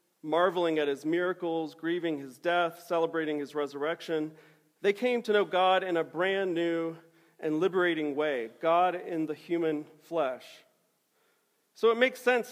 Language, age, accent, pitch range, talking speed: English, 40-59, American, 155-200 Hz, 150 wpm